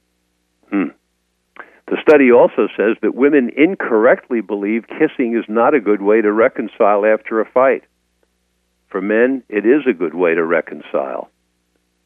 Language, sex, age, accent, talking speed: English, male, 60-79, American, 145 wpm